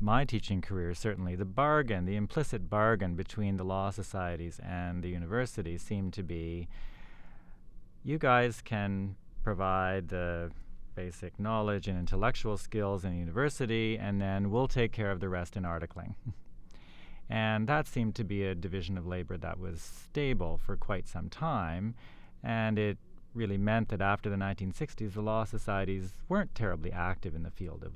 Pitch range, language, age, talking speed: 90-110 Hz, English, 30-49, 165 wpm